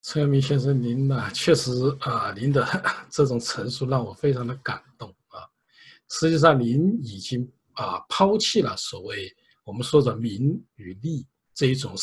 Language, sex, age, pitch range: Chinese, male, 50-69, 130-170 Hz